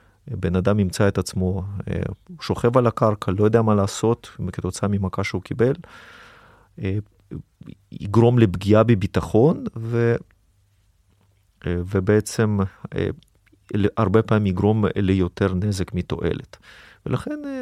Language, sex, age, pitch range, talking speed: Hebrew, male, 30-49, 95-115 Hz, 95 wpm